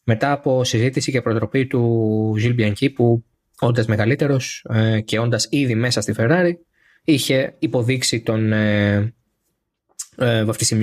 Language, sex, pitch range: Greek, male, 110-140 Hz